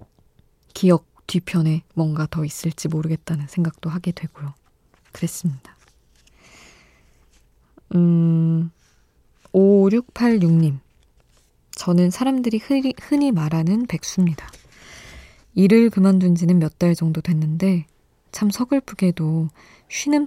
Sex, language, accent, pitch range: female, Korean, native, 155-185 Hz